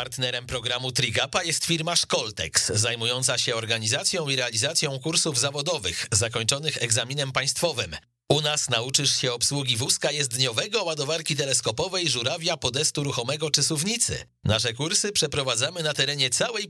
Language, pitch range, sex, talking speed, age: Polish, 110-140 Hz, male, 130 wpm, 40-59